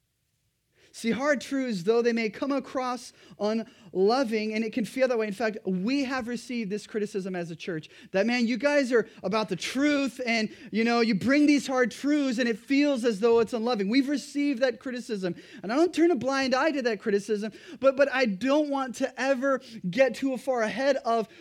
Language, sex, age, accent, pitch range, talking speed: English, male, 20-39, American, 205-270 Hz, 205 wpm